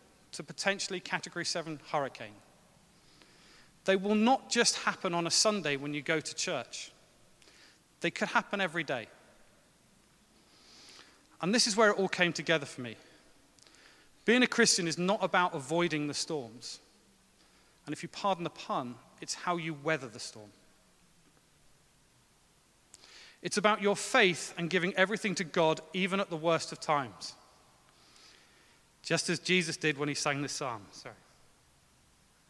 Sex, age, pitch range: male, 30-49, 145-190 Hz